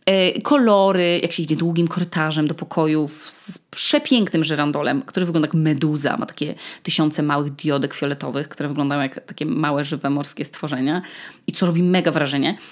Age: 20-39